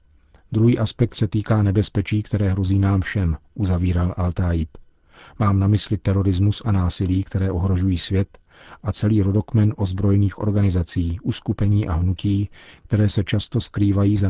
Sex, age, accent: male, 40-59, native